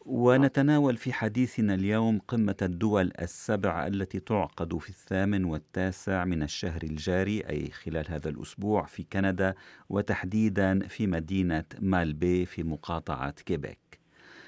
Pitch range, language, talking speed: 85-105 Hz, Arabic, 115 wpm